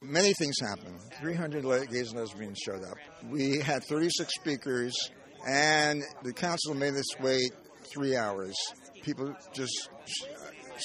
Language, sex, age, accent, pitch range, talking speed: English, male, 60-79, American, 120-150 Hz, 135 wpm